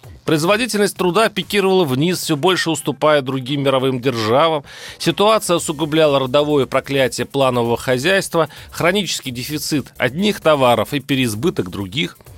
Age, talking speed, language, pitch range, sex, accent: 30-49, 110 wpm, Russian, 135-180 Hz, male, native